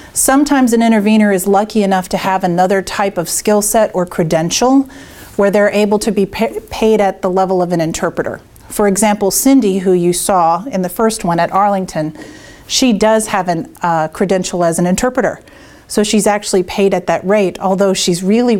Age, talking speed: 40-59, 185 wpm